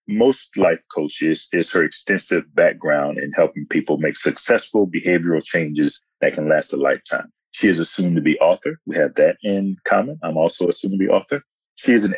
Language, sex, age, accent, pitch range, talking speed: English, male, 30-49, American, 90-130 Hz, 180 wpm